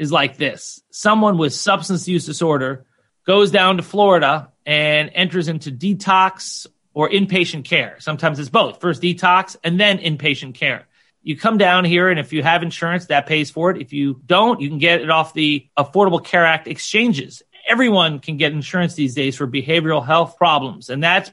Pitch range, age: 150-180 Hz, 40-59